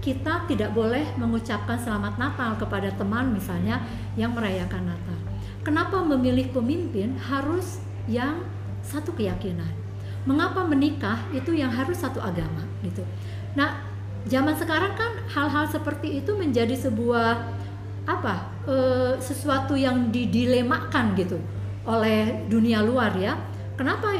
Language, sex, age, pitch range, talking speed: Indonesian, female, 50-69, 95-110 Hz, 115 wpm